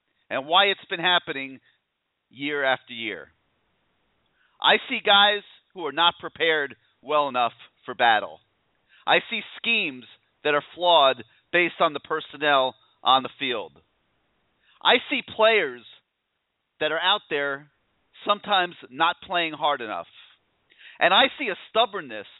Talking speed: 130 wpm